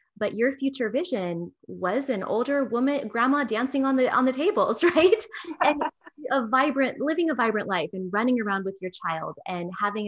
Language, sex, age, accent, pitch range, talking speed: English, female, 20-39, American, 185-240 Hz, 185 wpm